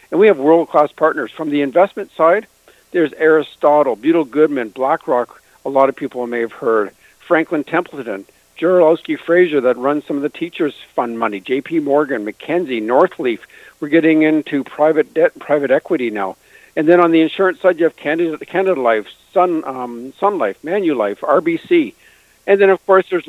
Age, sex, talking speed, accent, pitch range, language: 50-69, male, 170 wpm, American, 135-175 Hz, English